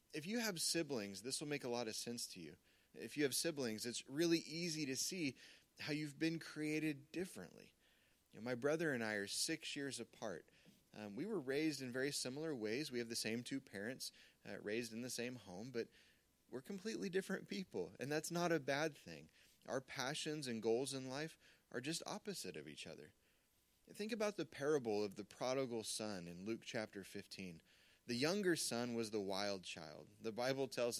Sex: male